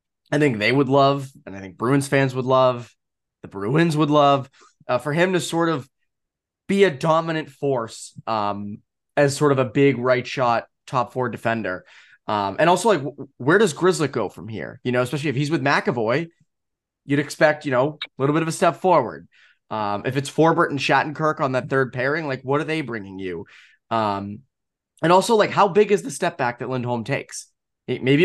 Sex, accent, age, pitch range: male, American, 20-39, 125-160 Hz